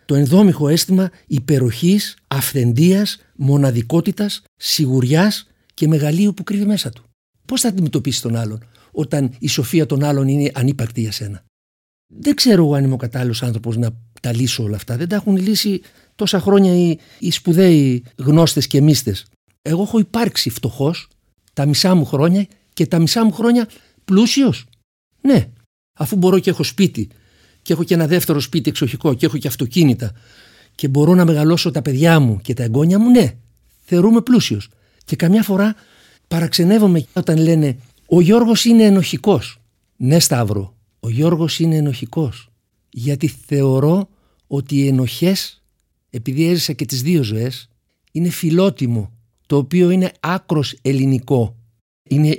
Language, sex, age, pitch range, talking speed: Greek, male, 60-79, 120-180 Hz, 150 wpm